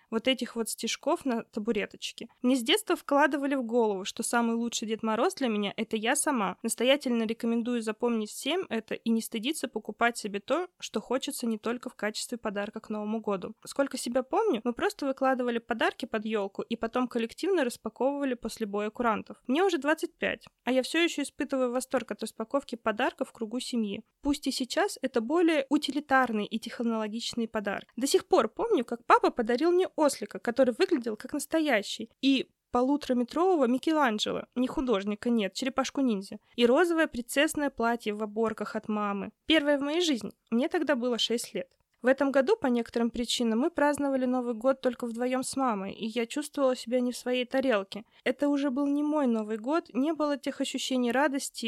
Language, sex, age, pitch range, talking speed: Russian, female, 20-39, 225-280 Hz, 180 wpm